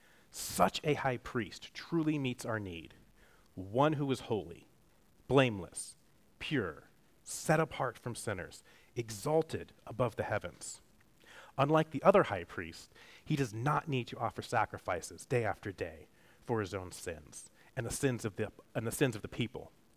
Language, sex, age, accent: English, male, 30-49, American